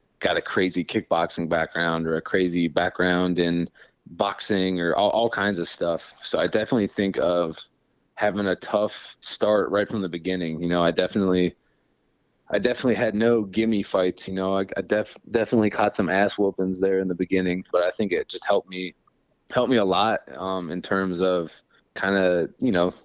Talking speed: 185 wpm